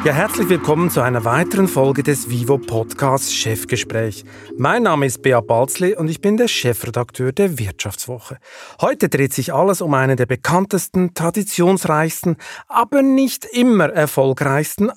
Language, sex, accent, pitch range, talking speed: German, male, Austrian, 125-175 Hz, 140 wpm